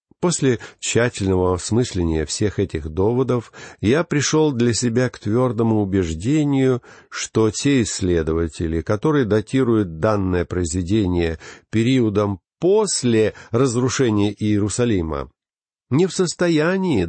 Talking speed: 95 wpm